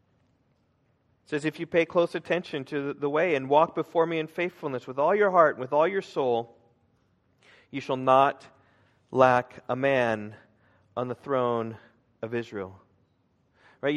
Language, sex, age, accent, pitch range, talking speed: English, male, 40-59, American, 125-155 Hz, 155 wpm